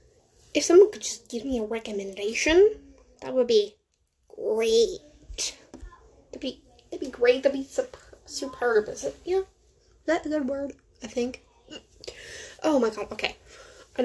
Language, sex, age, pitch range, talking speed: English, female, 10-29, 220-370 Hz, 150 wpm